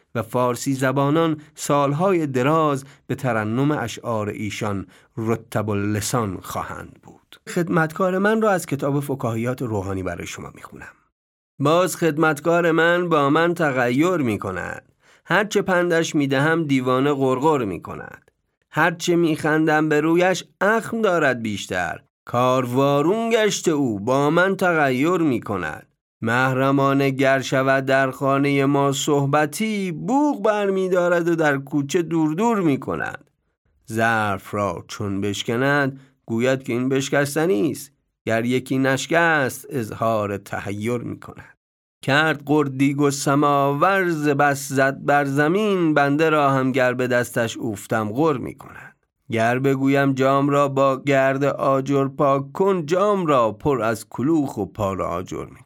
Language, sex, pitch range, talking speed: Persian, male, 125-160 Hz, 135 wpm